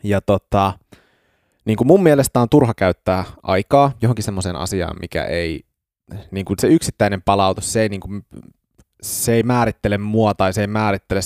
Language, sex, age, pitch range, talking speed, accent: Finnish, male, 20-39, 95-120 Hz, 160 wpm, native